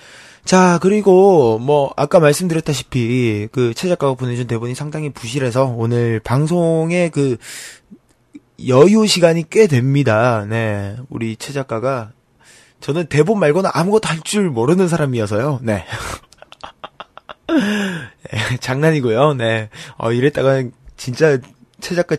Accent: native